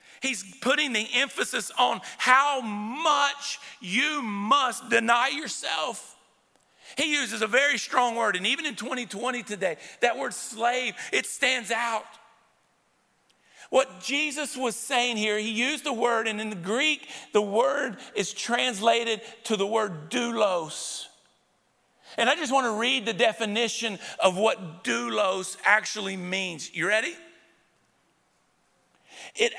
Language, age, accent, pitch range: English, 50-69, American, 195-255 Hz